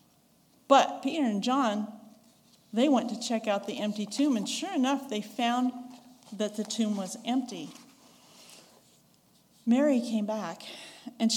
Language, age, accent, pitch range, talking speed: English, 50-69, American, 215-260 Hz, 135 wpm